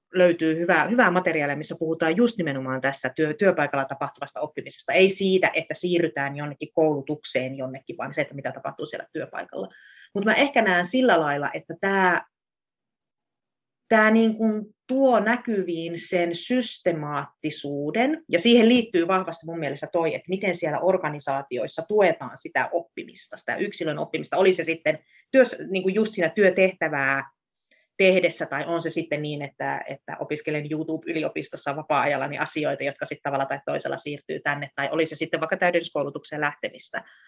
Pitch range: 150-195 Hz